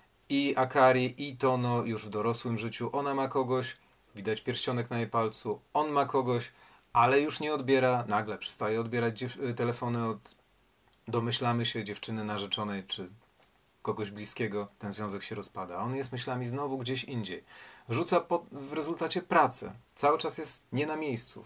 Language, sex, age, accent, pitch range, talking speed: Polish, male, 40-59, native, 115-145 Hz, 155 wpm